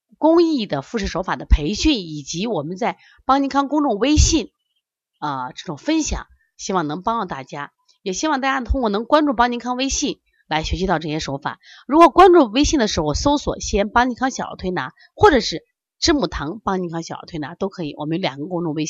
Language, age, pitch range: Chinese, 30-49, 200-335 Hz